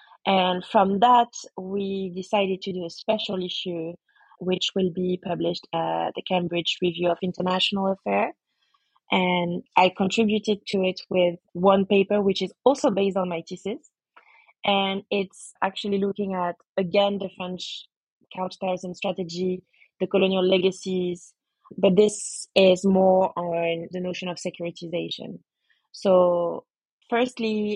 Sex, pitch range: female, 180-200 Hz